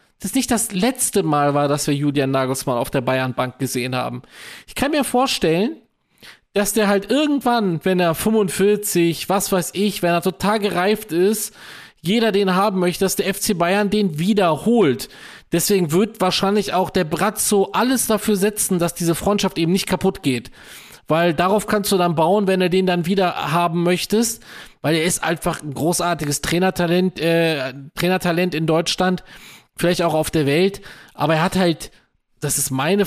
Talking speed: 175 wpm